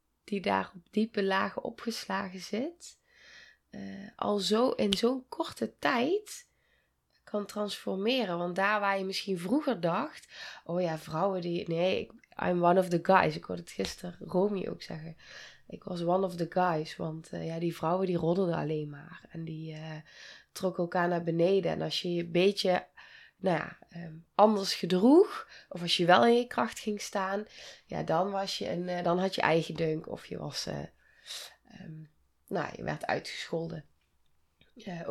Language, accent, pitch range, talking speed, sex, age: Dutch, Dutch, 160-200 Hz, 170 wpm, female, 20-39